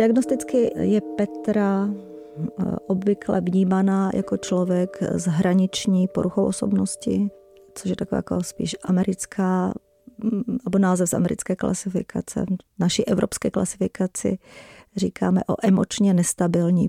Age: 30-49